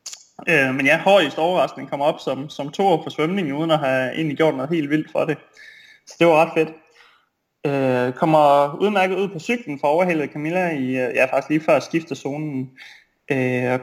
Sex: male